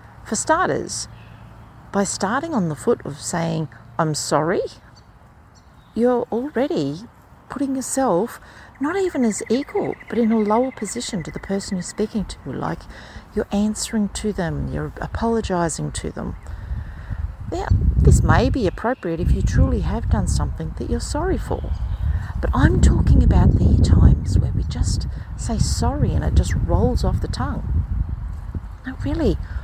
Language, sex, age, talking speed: English, female, 50-69, 150 wpm